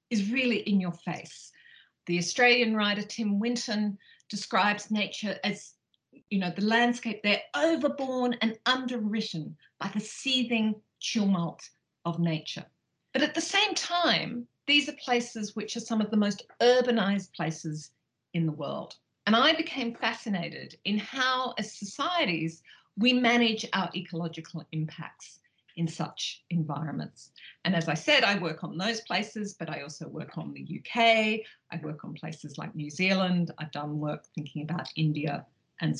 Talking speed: 150 wpm